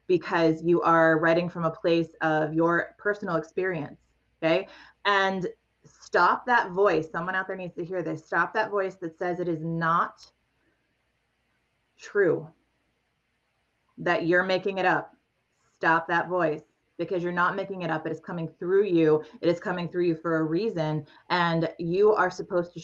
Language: English